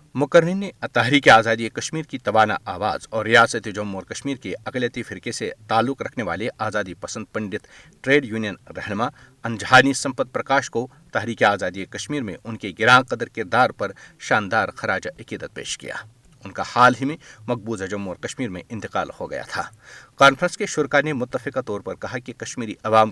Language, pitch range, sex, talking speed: Urdu, 110-135 Hz, male, 180 wpm